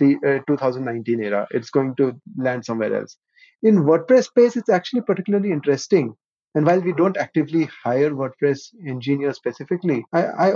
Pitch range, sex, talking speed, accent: 135-175 Hz, male, 160 wpm, Indian